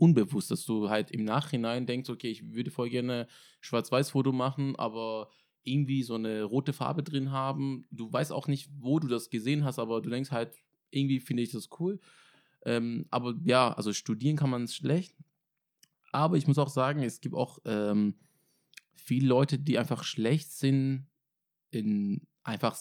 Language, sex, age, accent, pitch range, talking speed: German, male, 20-39, German, 115-140 Hz, 170 wpm